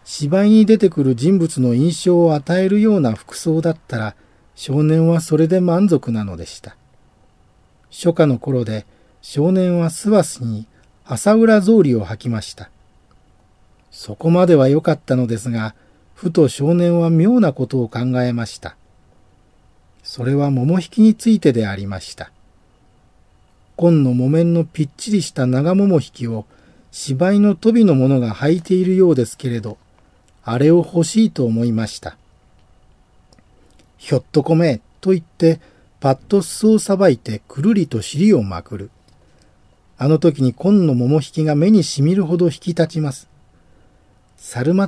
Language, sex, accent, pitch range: Japanese, male, native, 105-170 Hz